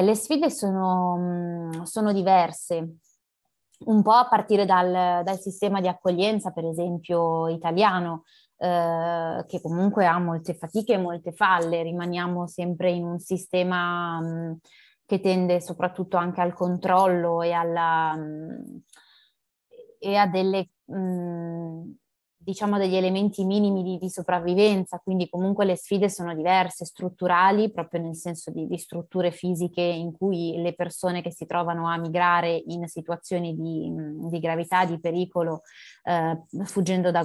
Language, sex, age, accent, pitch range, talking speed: Italian, female, 20-39, native, 170-190 Hz, 130 wpm